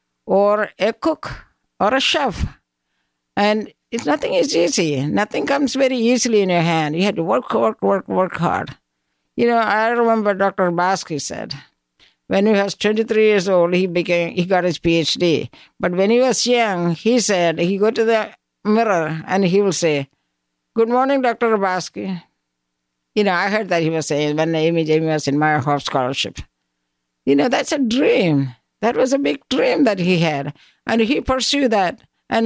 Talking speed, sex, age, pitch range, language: 180 wpm, female, 60-79, 170-235 Hz, English